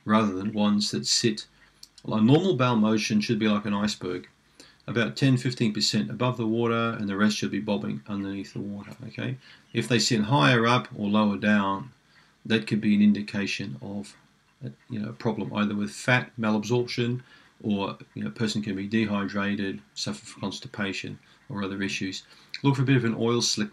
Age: 40-59